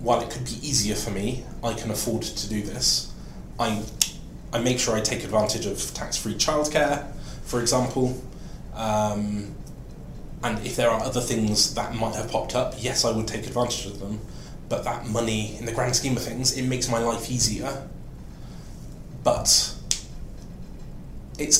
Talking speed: 165 wpm